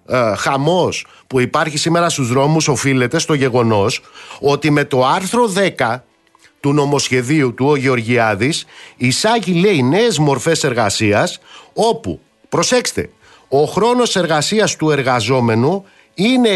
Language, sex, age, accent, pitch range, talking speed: Greek, male, 50-69, native, 145-225 Hz, 110 wpm